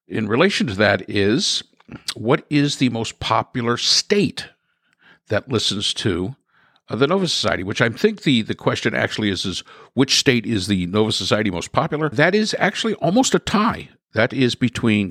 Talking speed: 170 wpm